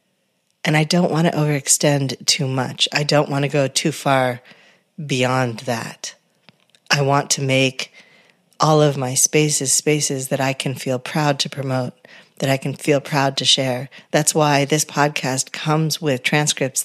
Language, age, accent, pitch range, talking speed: English, 50-69, American, 135-155 Hz, 165 wpm